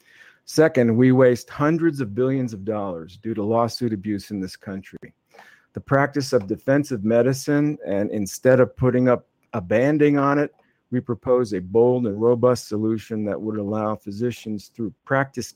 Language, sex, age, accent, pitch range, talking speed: English, male, 50-69, American, 105-130 Hz, 160 wpm